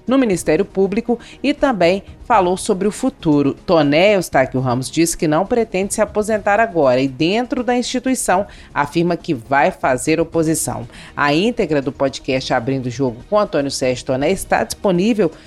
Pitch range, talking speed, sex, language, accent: 150-210 Hz, 155 wpm, female, Portuguese, Brazilian